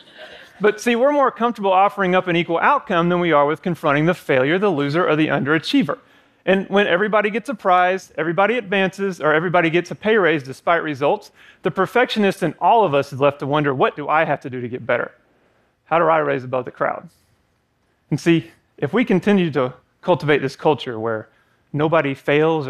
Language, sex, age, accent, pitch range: Korean, male, 30-49, American, 140-185 Hz